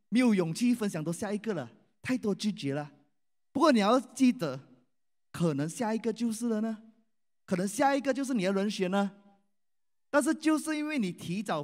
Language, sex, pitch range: Chinese, male, 175-235 Hz